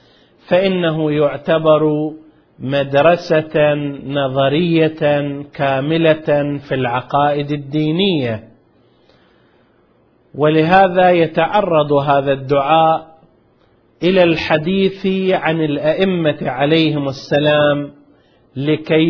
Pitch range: 140-170 Hz